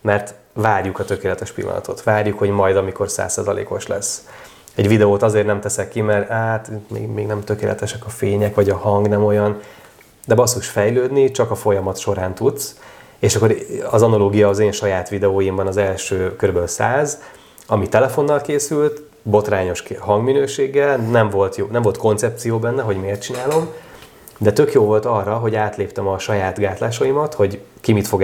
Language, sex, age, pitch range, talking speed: Hungarian, male, 30-49, 100-120 Hz, 165 wpm